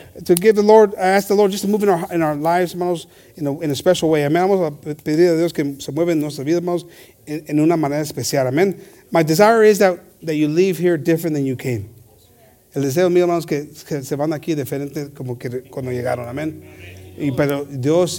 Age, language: 30-49, English